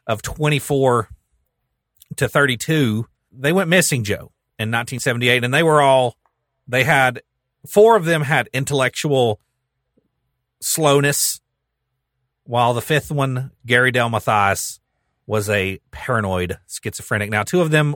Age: 40-59